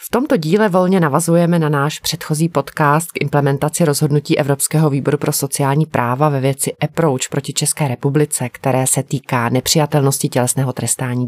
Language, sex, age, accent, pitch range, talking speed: Czech, female, 30-49, native, 130-155 Hz, 155 wpm